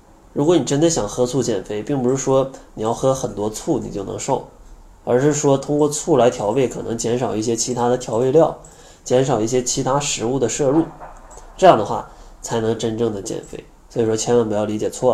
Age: 20-39